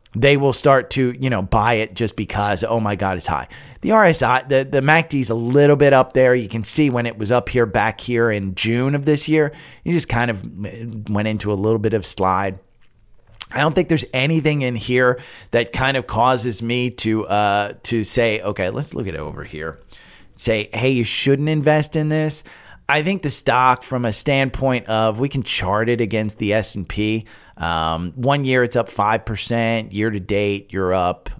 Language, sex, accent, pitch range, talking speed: English, male, American, 105-135 Hz, 205 wpm